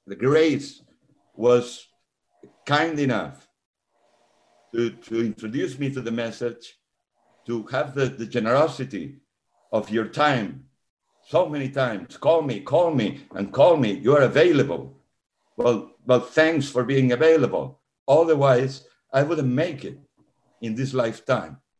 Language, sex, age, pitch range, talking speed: English, male, 60-79, 115-140 Hz, 130 wpm